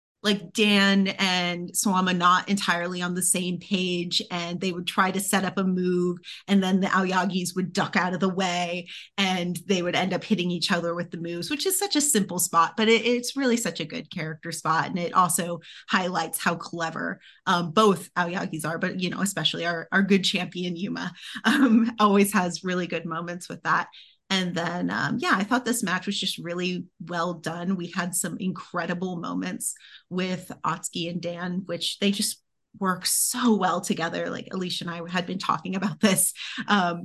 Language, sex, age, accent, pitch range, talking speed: English, female, 30-49, American, 175-200 Hz, 195 wpm